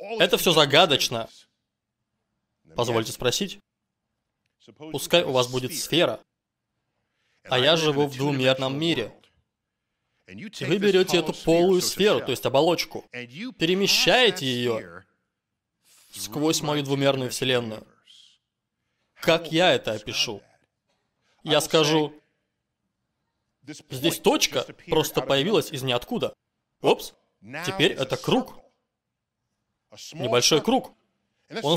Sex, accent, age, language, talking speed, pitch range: male, native, 20-39, Russian, 95 wpm, 135-200 Hz